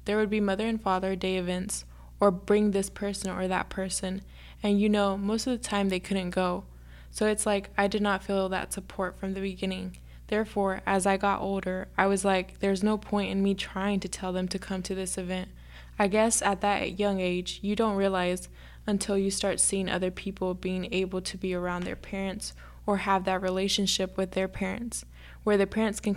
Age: 10-29